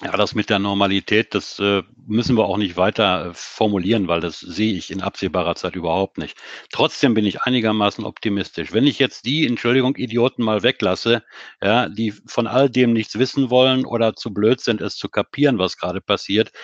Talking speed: 190 wpm